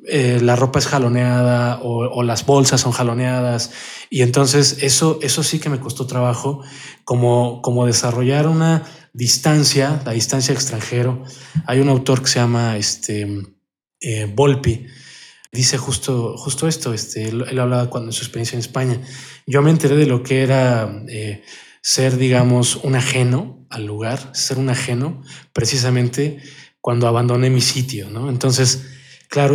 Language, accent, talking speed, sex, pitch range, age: Spanish, Mexican, 155 wpm, male, 120-140 Hz, 20-39